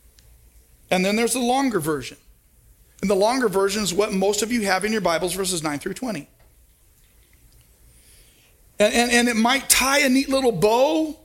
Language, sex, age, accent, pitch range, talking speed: English, male, 40-59, American, 180-250 Hz, 175 wpm